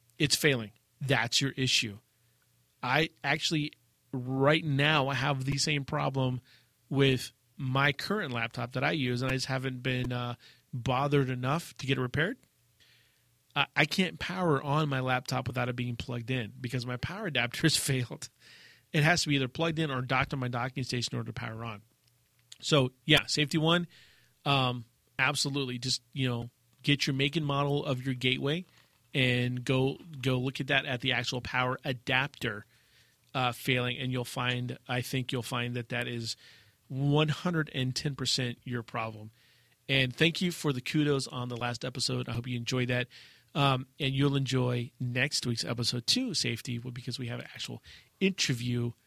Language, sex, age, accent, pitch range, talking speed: English, male, 30-49, American, 120-140 Hz, 175 wpm